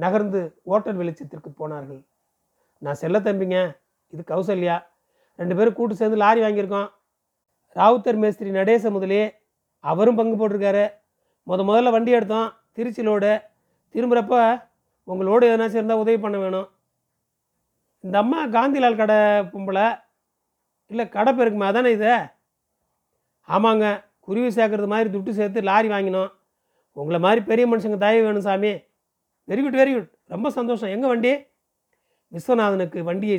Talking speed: 120 wpm